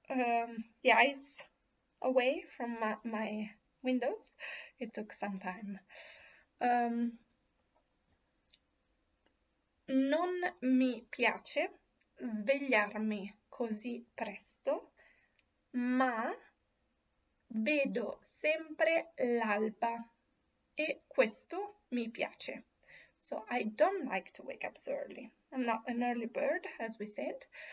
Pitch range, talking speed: 225-285 Hz, 95 wpm